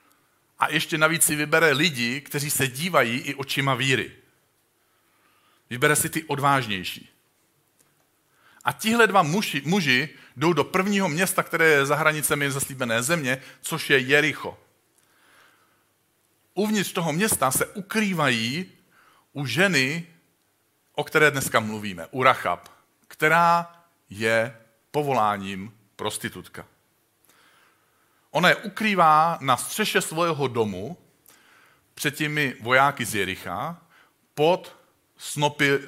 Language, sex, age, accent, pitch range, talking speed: Czech, male, 40-59, native, 120-155 Hz, 105 wpm